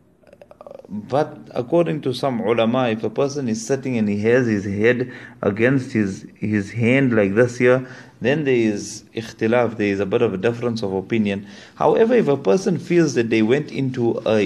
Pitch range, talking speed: 110-135 Hz, 185 wpm